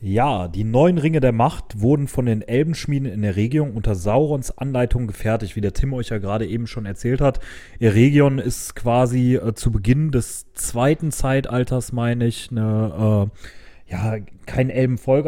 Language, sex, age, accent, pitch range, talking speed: German, male, 30-49, German, 110-135 Hz, 170 wpm